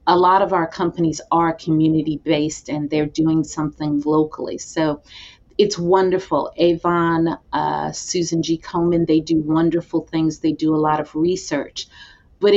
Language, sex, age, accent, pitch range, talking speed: English, female, 40-59, American, 155-175 Hz, 150 wpm